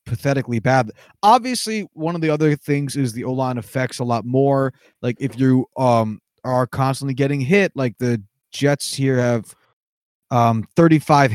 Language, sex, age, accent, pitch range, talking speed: English, male, 20-39, American, 120-155 Hz, 160 wpm